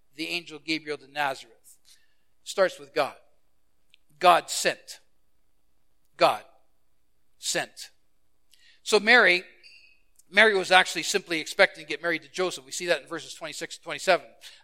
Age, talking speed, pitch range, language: 50-69, 125 wpm, 160-200 Hz, English